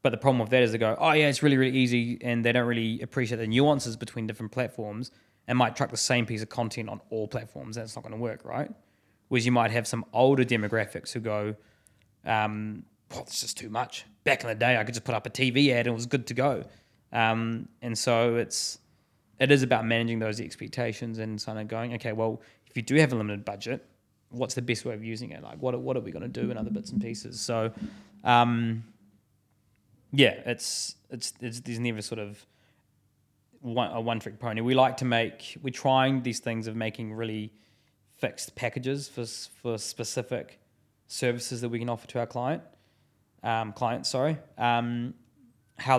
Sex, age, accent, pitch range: male, 20-39, Australian, 110-125 Hz